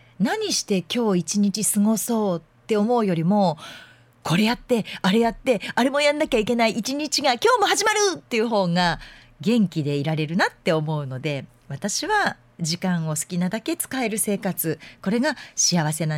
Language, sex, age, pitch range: Japanese, female, 40-59, 155-225 Hz